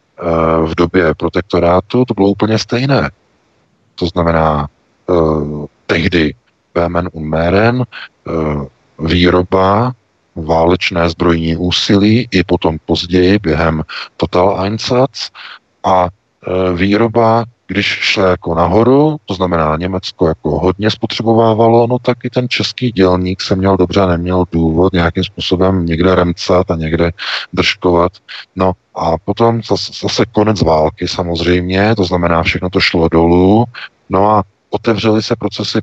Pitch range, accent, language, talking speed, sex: 85-100 Hz, native, Czech, 120 wpm, male